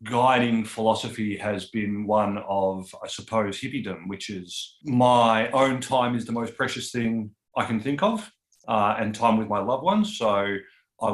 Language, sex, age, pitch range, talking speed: English, male, 30-49, 100-115 Hz, 170 wpm